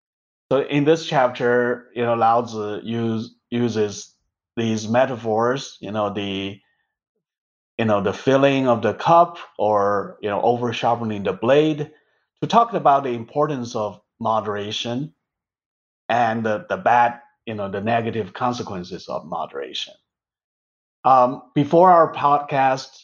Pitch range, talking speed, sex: 110-140 Hz, 130 wpm, male